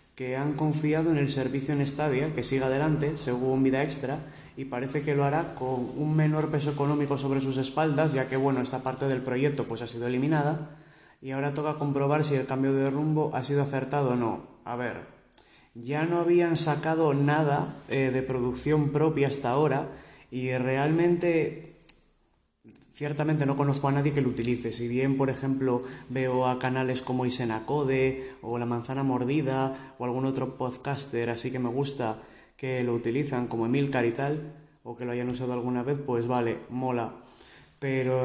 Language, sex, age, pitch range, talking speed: Spanish, male, 20-39, 125-145 Hz, 180 wpm